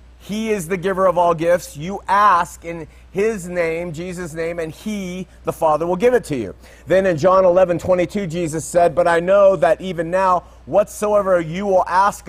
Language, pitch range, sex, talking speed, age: Italian, 160-195 Hz, male, 195 wpm, 30-49